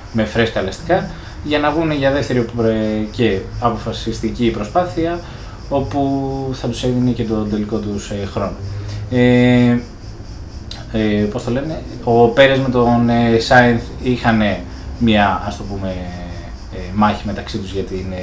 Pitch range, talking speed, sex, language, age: 100-130 Hz, 130 wpm, male, Greek, 20-39